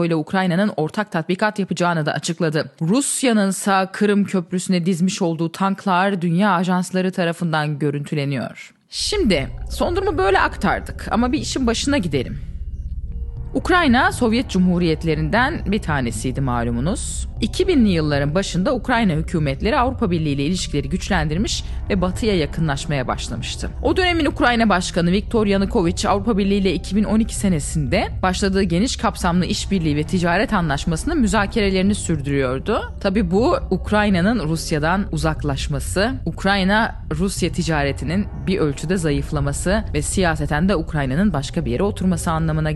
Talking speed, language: 120 wpm, Turkish